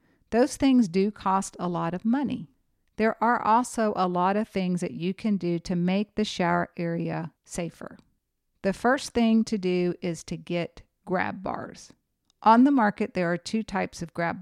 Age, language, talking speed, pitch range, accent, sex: 50-69, English, 185 wpm, 175-215 Hz, American, female